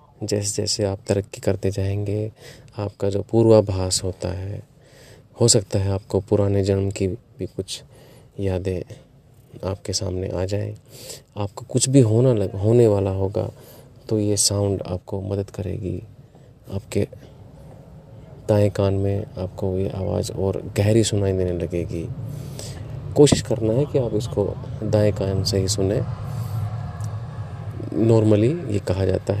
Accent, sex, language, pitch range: native, male, Hindi, 100-125 Hz